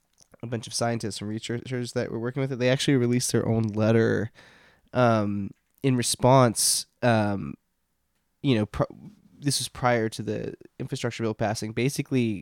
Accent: American